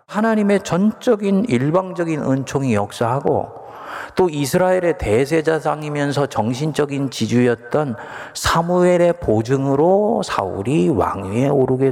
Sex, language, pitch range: male, Korean, 110-145 Hz